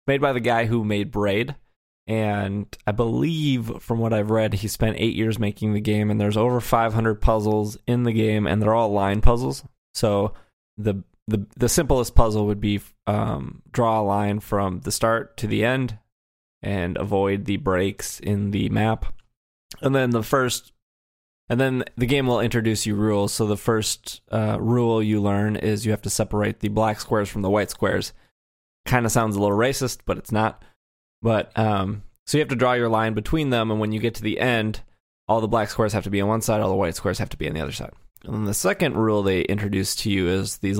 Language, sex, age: English, male, 20-39